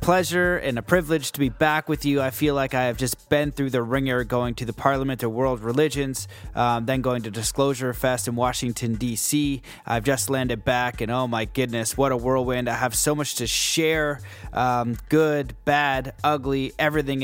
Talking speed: 200 wpm